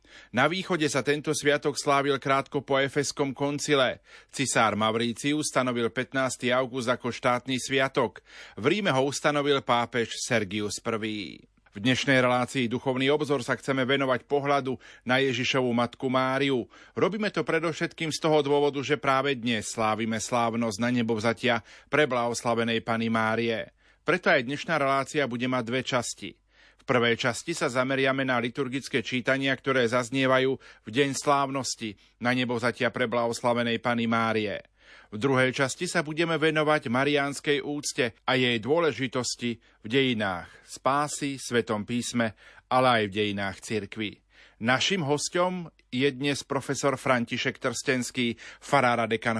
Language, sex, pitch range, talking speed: Slovak, male, 115-140 Hz, 135 wpm